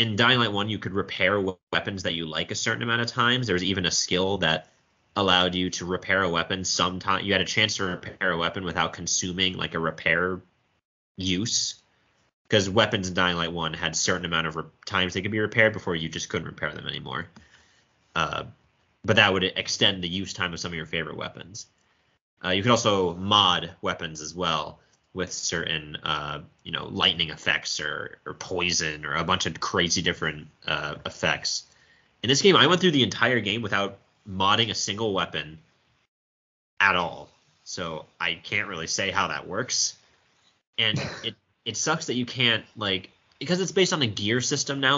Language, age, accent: English, 30-49, American